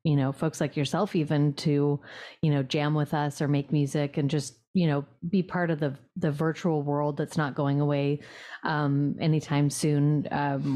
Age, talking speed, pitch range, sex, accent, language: 30-49, 190 wpm, 140-160 Hz, female, American, English